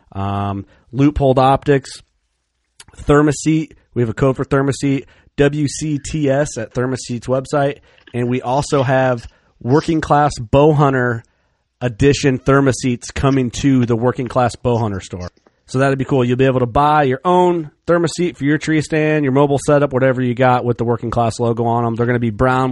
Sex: male